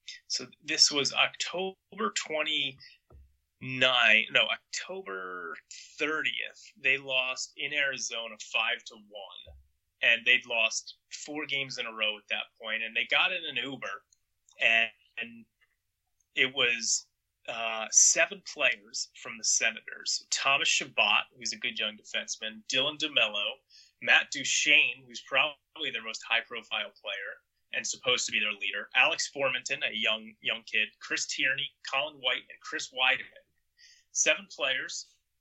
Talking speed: 135 wpm